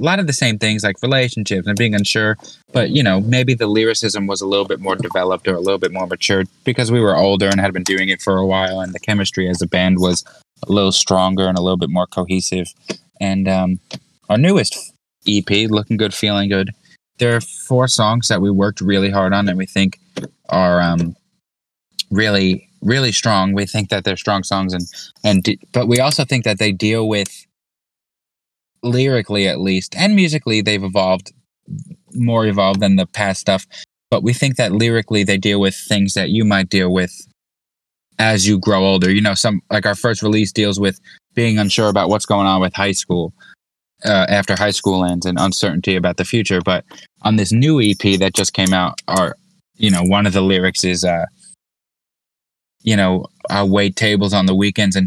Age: 20-39